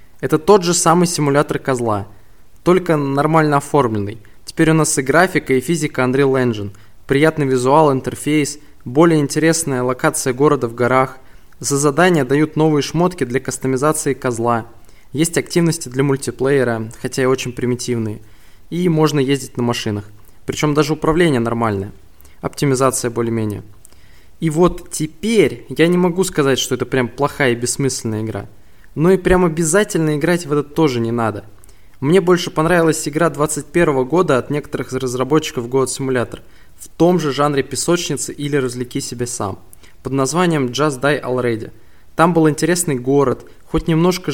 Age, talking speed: 20-39, 150 wpm